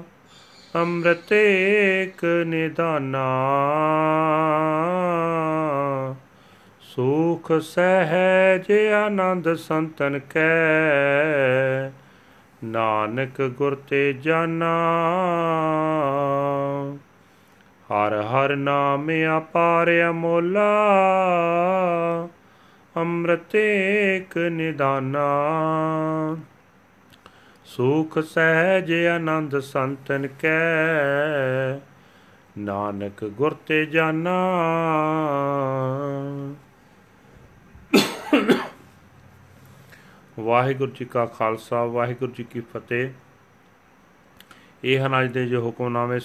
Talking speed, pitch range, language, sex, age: 55 wpm, 125-165 Hz, Punjabi, male, 40-59